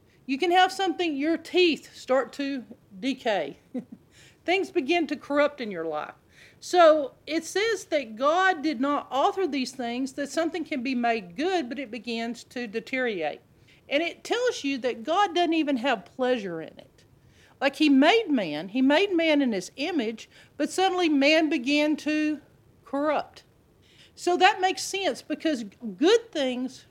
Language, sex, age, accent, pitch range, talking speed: English, female, 50-69, American, 230-325 Hz, 160 wpm